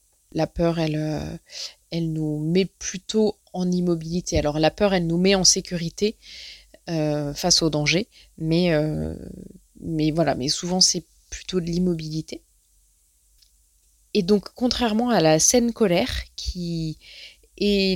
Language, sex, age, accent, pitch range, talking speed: French, female, 20-39, French, 145-195 Hz, 135 wpm